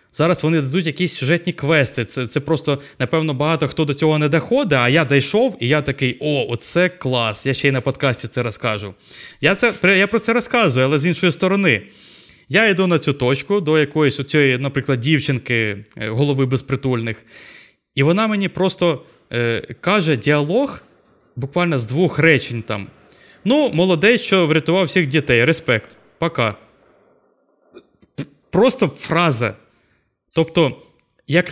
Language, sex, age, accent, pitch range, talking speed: Ukrainian, male, 20-39, native, 125-170 Hz, 150 wpm